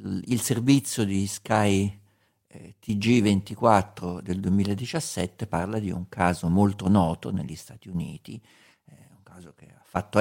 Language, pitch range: Italian, 90-105 Hz